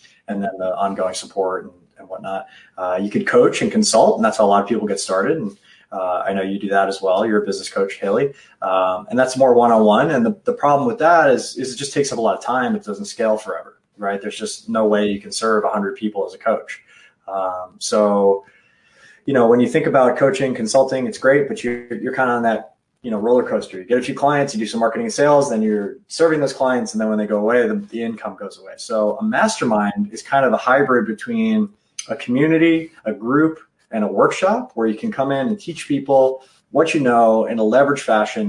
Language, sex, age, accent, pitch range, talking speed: English, male, 20-39, American, 105-145 Hz, 250 wpm